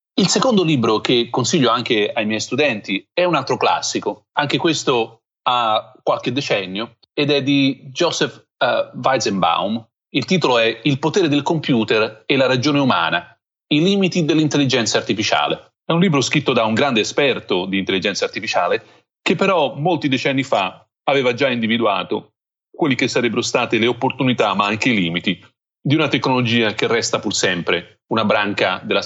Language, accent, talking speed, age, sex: Italian, native, 160 wpm, 30-49, male